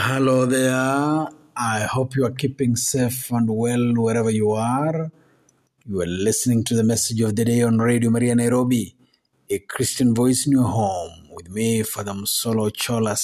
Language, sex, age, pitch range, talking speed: Swahili, male, 50-69, 110-140 Hz, 170 wpm